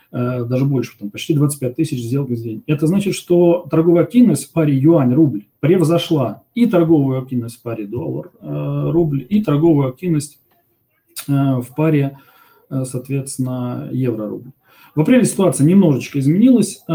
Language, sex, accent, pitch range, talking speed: Russian, male, native, 125-165 Hz, 125 wpm